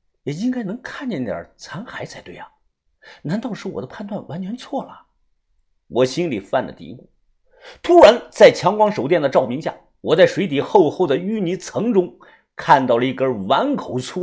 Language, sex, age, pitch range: Chinese, male, 50-69, 140-230 Hz